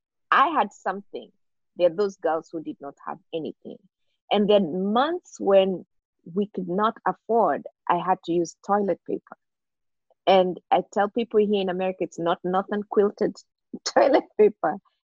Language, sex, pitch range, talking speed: English, female, 190-275 Hz, 155 wpm